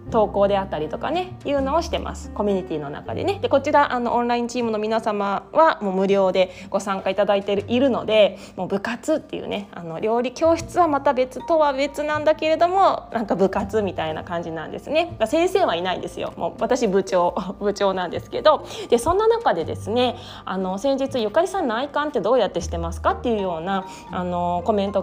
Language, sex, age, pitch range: Japanese, female, 20-39, 190-280 Hz